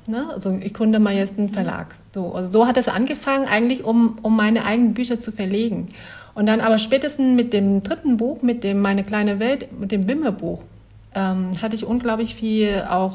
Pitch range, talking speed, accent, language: 195-240 Hz, 200 wpm, German, German